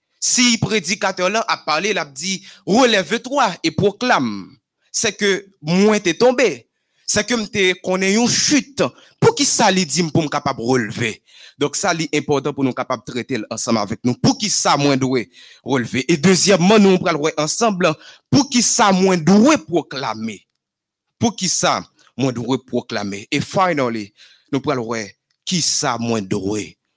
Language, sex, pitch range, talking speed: French, male, 150-245 Hz, 160 wpm